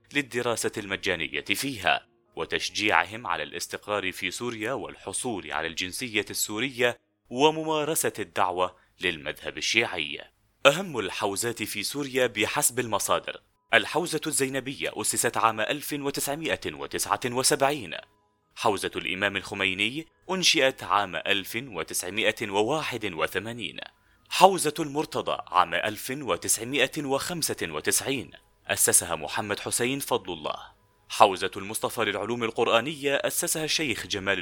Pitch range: 100-145 Hz